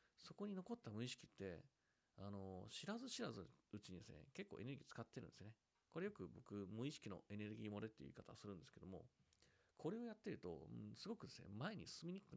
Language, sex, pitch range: Japanese, male, 100-140 Hz